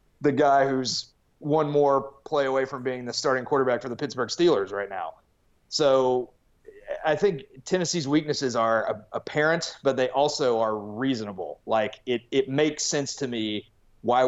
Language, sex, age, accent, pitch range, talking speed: English, male, 30-49, American, 125-165 Hz, 160 wpm